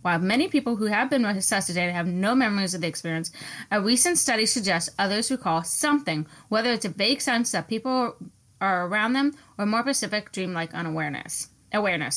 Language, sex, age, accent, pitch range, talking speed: English, female, 20-39, American, 175-225 Hz, 180 wpm